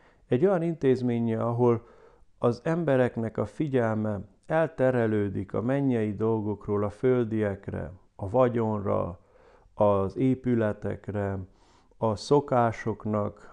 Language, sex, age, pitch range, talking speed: Hungarian, male, 50-69, 105-130 Hz, 90 wpm